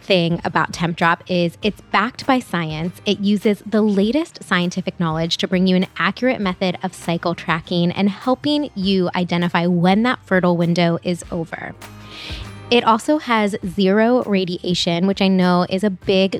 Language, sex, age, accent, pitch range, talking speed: English, female, 20-39, American, 180-215 Hz, 160 wpm